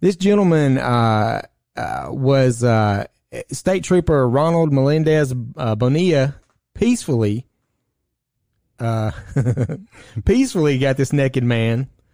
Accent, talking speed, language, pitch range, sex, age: American, 95 wpm, English, 115-140 Hz, male, 30-49